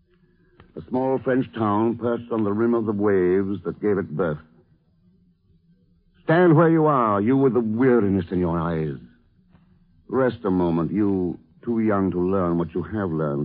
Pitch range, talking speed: 85-130 Hz, 170 wpm